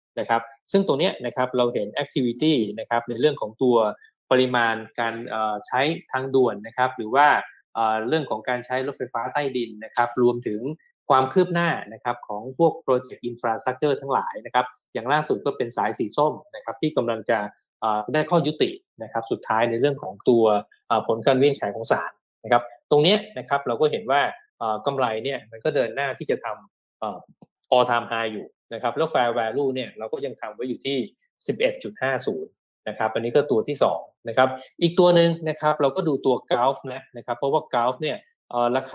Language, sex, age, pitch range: Thai, male, 20-39, 120-150 Hz